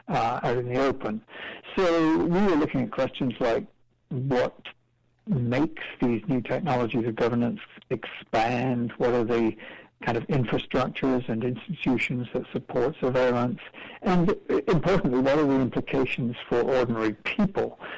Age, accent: 60-79, American